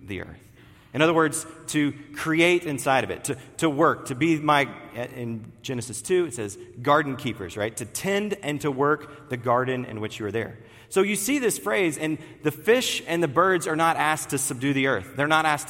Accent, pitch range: American, 130-165 Hz